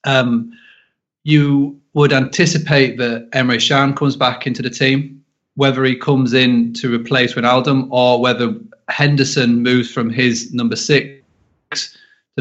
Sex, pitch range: male, 120-140 Hz